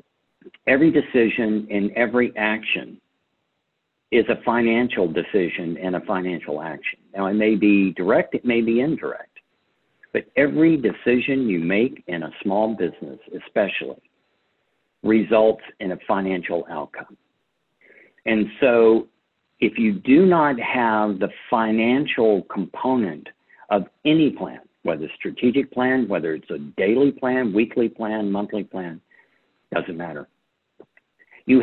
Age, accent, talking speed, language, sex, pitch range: 60-79, American, 125 wpm, English, male, 105-125 Hz